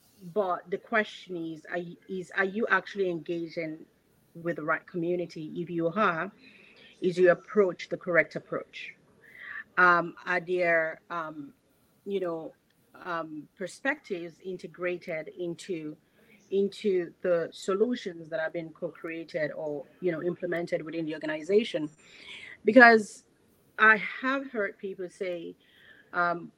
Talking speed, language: 125 wpm, English